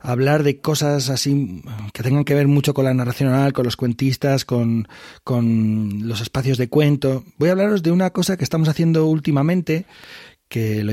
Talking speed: 185 wpm